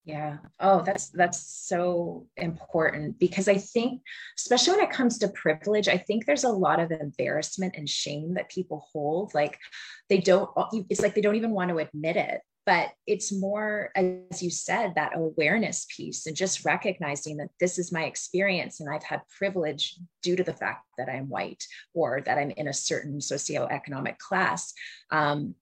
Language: English